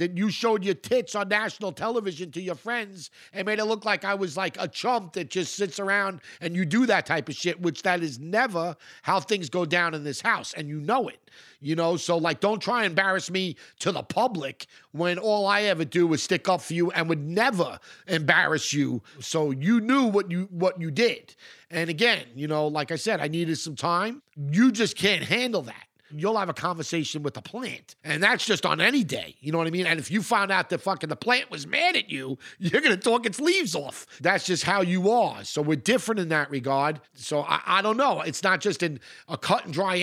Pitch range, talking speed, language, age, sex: 160-200 Hz, 240 wpm, English, 50-69, male